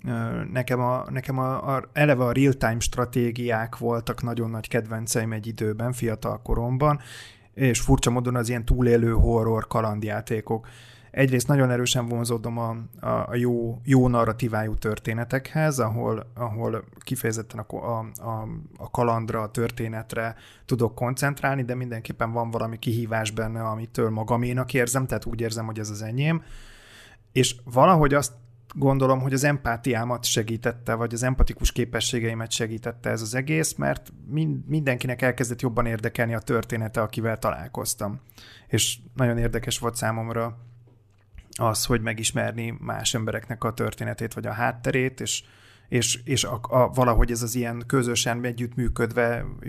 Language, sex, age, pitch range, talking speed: Hungarian, male, 30-49, 115-130 Hz, 130 wpm